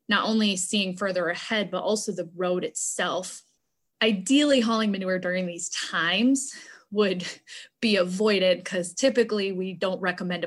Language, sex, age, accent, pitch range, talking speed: English, female, 20-39, American, 175-215 Hz, 140 wpm